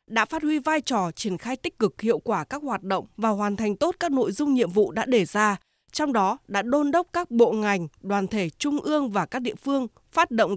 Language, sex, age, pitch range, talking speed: Vietnamese, female, 20-39, 200-275 Hz, 250 wpm